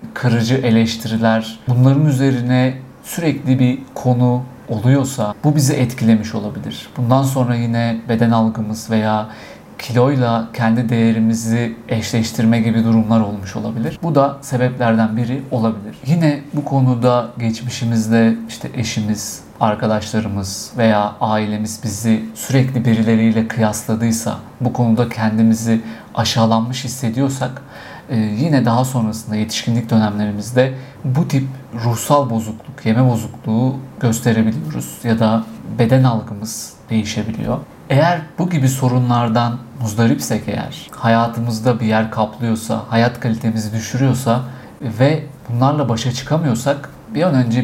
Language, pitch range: Turkish, 110-130 Hz